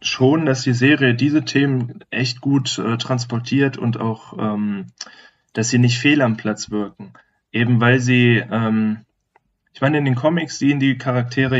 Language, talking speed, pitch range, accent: German, 165 wpm, 110-135 Hz, German